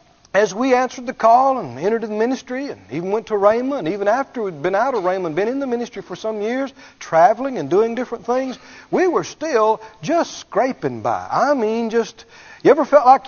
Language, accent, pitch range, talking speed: English, American, 220-290 Hz, 210 wpm